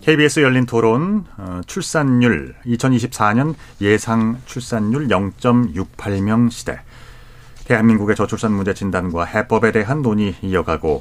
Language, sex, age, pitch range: Korean, male, 40-59, 100-130 Hz